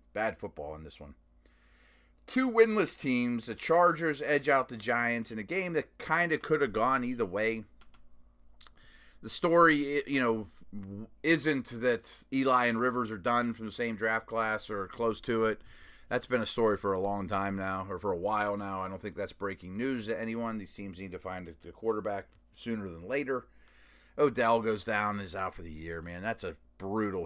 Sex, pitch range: male, 95-115 Hz